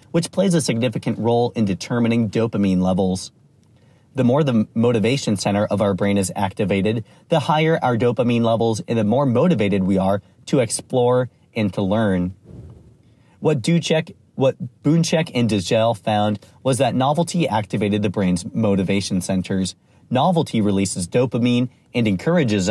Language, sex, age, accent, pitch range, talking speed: English, male, 30-49, American, 100-140 Hz, 145 wpm